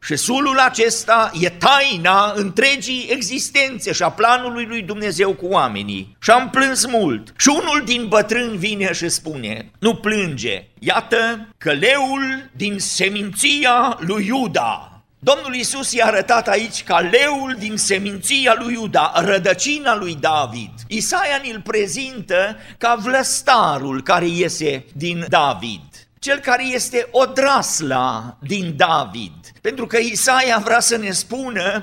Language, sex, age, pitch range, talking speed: Romanian, male, 50-69, 185-250 Hz, 130 wpm